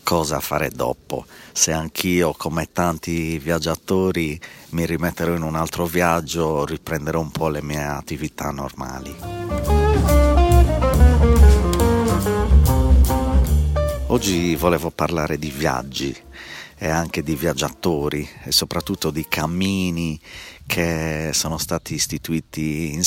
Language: Italian